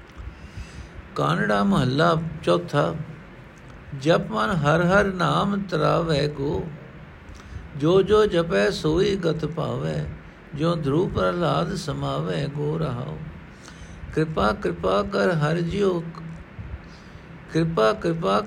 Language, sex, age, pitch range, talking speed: Punjabi, male, 60-79, 145-185 Hz, 95 wpm